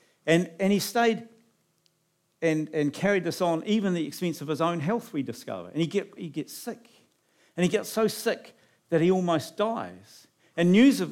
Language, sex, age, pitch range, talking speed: English, male, 50-69, 145-200 Hz, 200 wpm